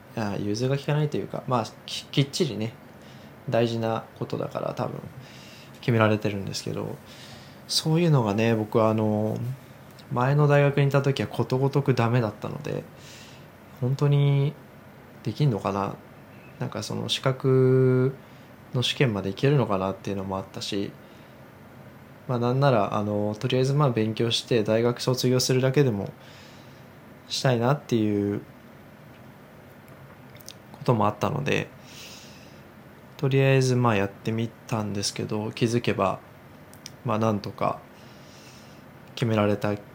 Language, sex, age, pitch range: Japanese, male, 20-39, 105-130 Hz